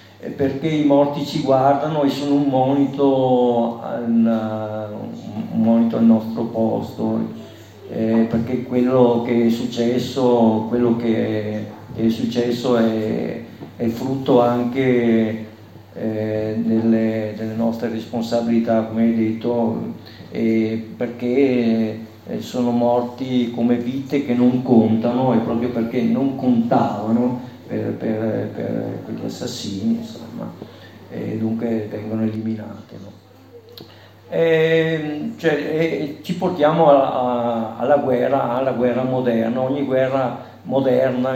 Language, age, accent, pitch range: Italian, 50-69, native, 110-125 Hz